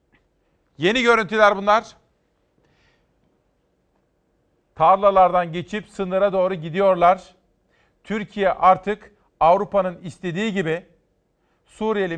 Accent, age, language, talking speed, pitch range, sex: native, 40-59, Turkish, 70 wpm, 180-205 Hz, male